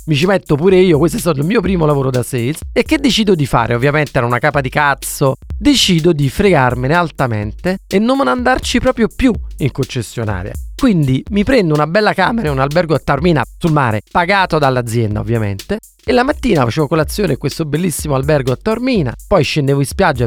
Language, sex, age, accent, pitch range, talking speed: Italian, male, 30-49, native, 135-220 Hz, 200 wpm